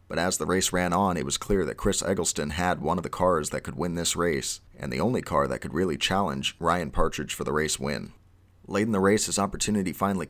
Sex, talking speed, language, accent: male, 250 wpm, English, American